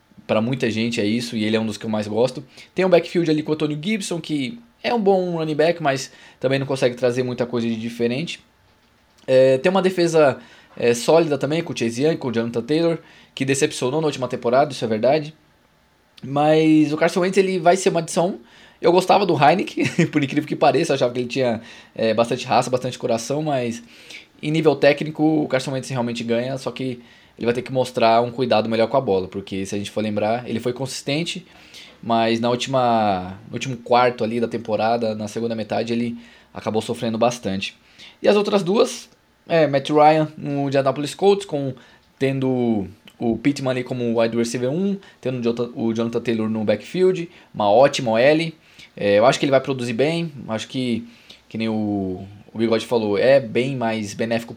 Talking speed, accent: 200 wpm, Brazilian